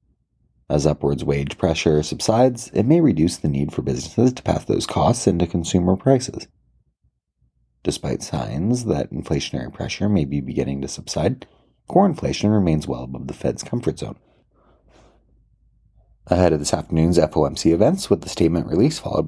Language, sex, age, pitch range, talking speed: English, male, 30-49, 70-100 Hz, 155 wpm